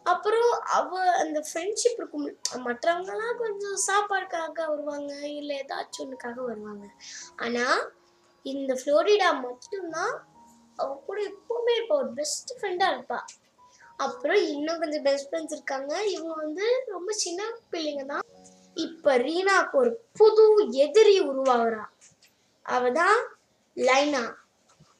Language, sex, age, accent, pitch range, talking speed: Tamil, female, 20-39, native, 255-370 Hz, 60 wpm